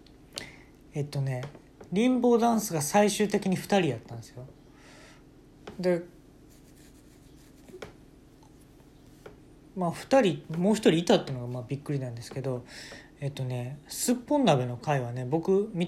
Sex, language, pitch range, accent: male, Japanese, 135-195 Hz, native